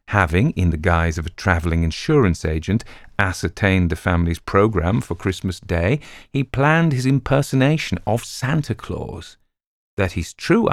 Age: 40-59